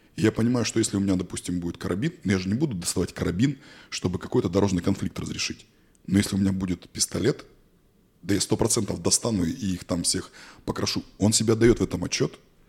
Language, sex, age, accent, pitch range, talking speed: Russian, male, 20-39, native, 90-100 Hz, 200 wpm